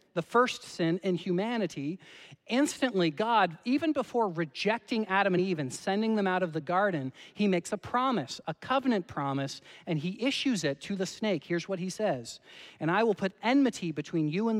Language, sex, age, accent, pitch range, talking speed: English, male, 40-59, American, 135-185 Hz, 190 wpm